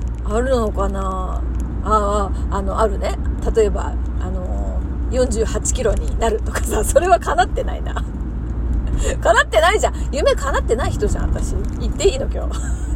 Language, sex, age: Japanese, female, 40-59